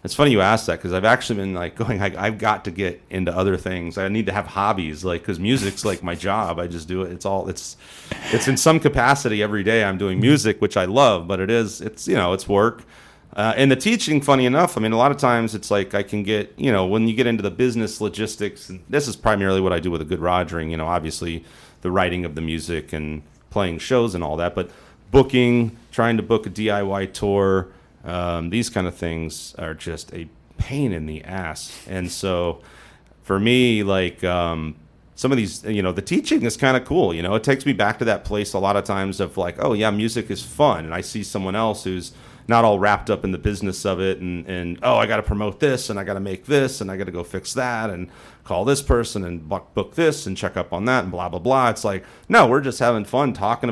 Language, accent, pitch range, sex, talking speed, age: English, American, 90-115 Hz, male, 250 wpm, 30-49